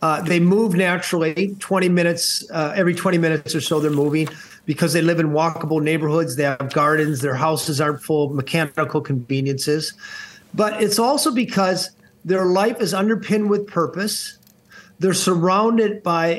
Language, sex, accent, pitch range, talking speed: English, male, American, 160-205 Hz, 155 wpm